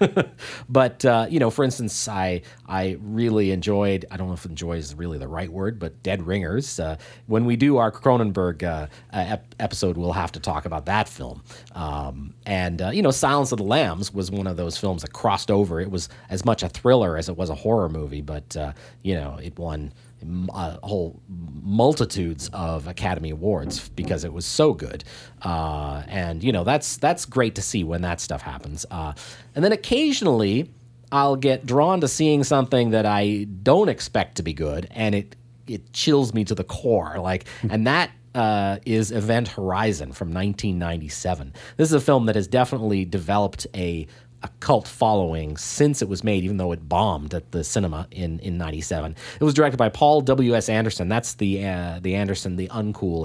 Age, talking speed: 40-59, 195 wpm